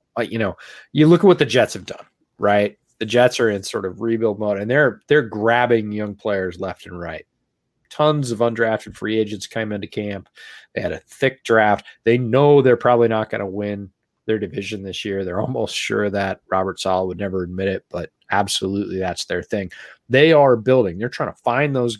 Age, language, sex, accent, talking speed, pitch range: 30-49, English, male, American, 210 wpm, 105-135 Hz